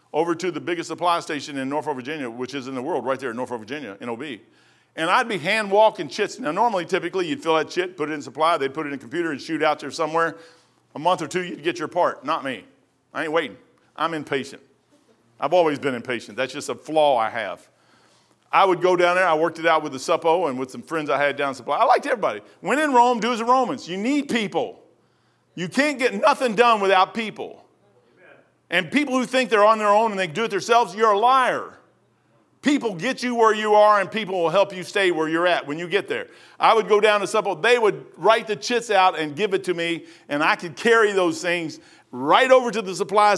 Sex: male